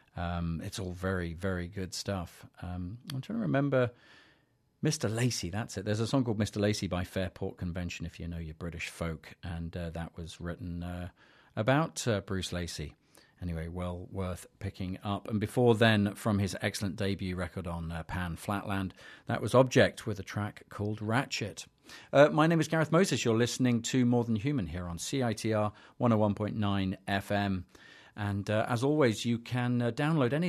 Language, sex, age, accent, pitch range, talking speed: English, male, 40-59, British, 95-115 Hz, 180 wpm